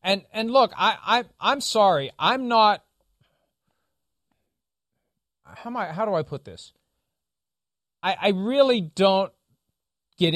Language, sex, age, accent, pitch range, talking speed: English, male, 40-59, American, 150-215 Hz, 125 wpm